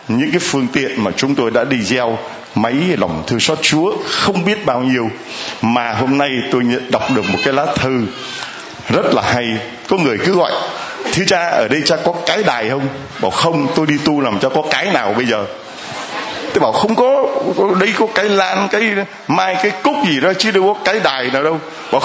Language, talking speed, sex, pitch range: Vietnamese, 220 wpm, male, 135-185 Hz